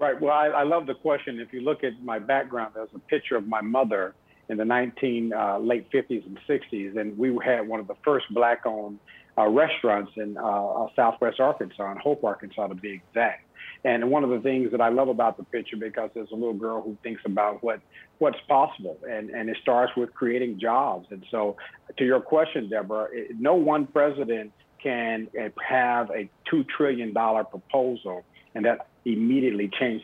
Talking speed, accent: 190 wpm, American